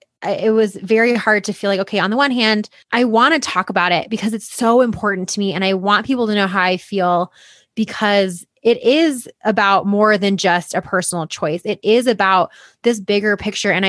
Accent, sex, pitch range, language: American, female, 185-225 Hz, English